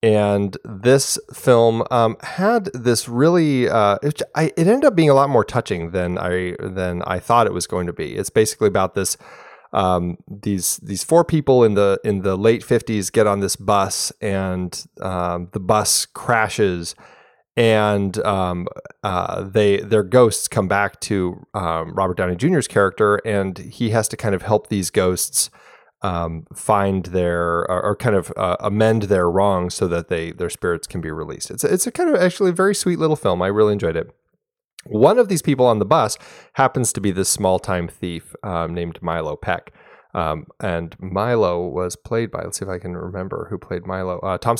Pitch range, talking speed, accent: 90-120 Hz, 195 wpm, American